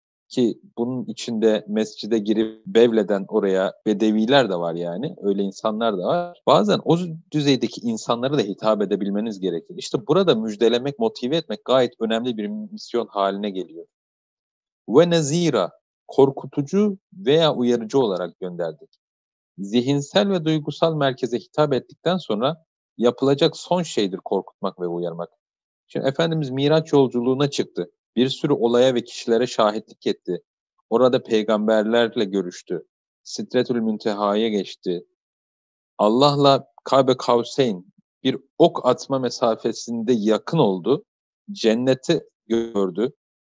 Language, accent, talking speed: Turkish, native, 115 wpm